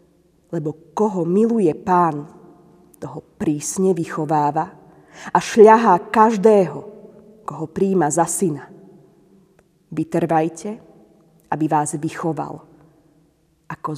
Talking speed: 80 wpm